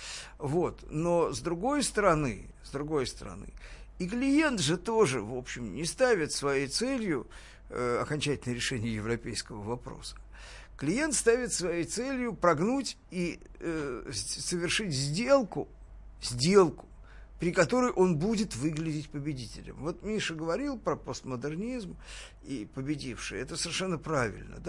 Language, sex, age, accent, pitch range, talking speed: Russian, male, 50-69, native, 130-200 Hz, 110 wpm